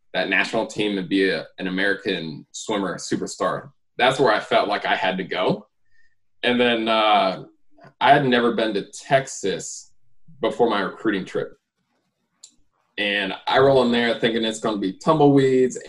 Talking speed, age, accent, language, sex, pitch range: 165 wpm, 20-39, American, English, male, 100-125 Hz